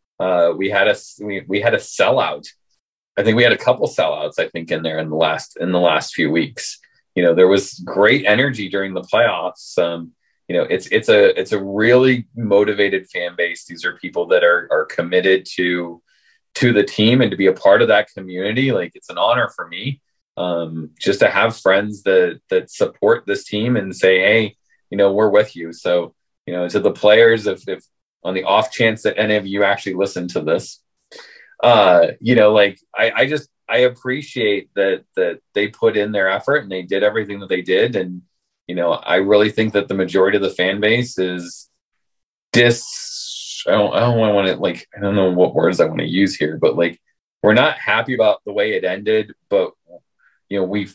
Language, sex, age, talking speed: English, male, 30-49, 215 wpm